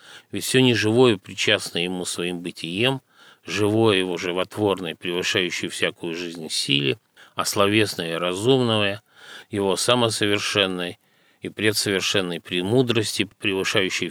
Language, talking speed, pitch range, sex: Russian, 100 wpm, 90-110 Hz, male